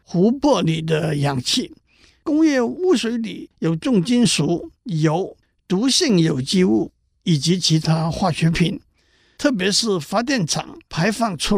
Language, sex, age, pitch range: Chinese, male, 50-69, 160-225 Hz